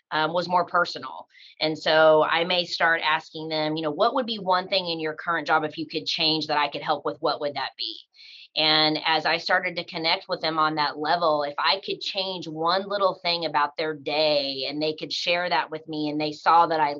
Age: 30-49